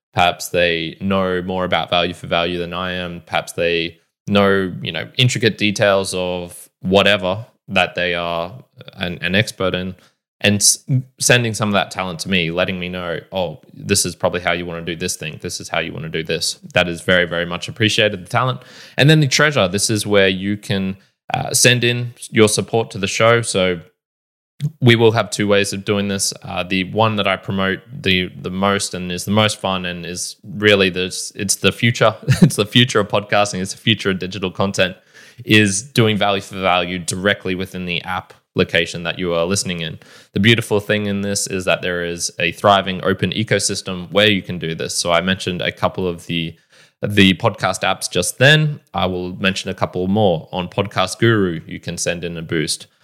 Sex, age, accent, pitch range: male, 20-39, Australian, 90-105 Hz